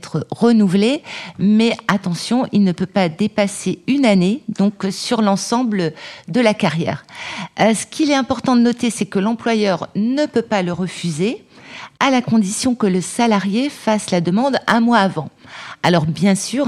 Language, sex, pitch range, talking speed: French, female, 175-215 Hz, 160 wpm